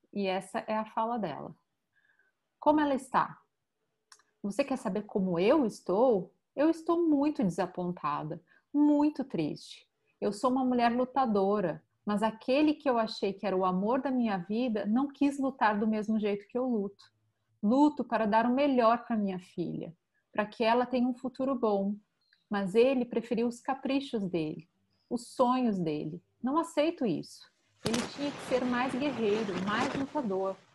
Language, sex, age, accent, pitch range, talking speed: Portuguese, female, 40-59, Brazilian, 200-260 Hz, 160 wpm